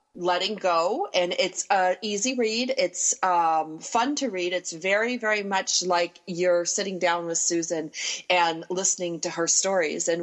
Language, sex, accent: English, female, American